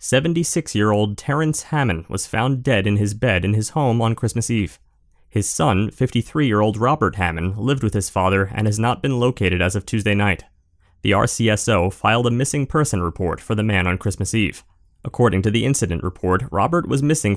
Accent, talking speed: American, 185 wpm